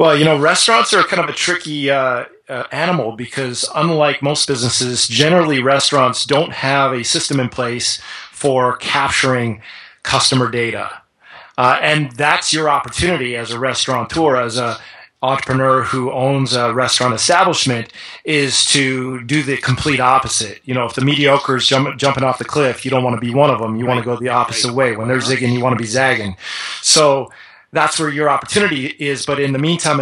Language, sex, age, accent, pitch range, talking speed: English, male, 30-49, American, 125-145 Hz, 185 wpm